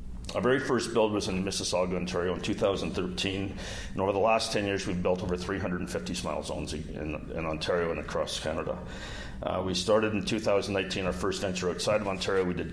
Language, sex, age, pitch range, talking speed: English, male, 50-69, 90-110 Hz, 195 wpm